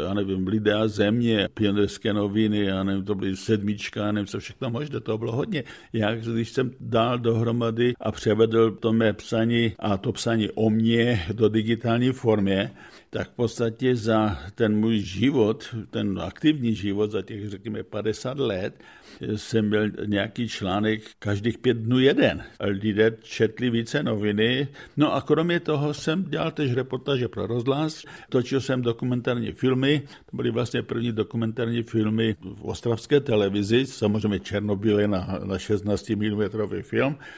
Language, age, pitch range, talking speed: Czech, 60-79, 105-120 Hz, 150 wpm